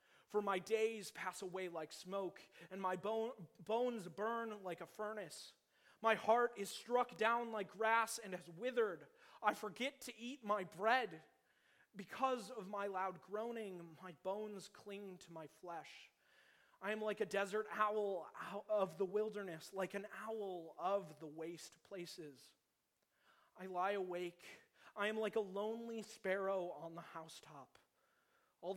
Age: 30-49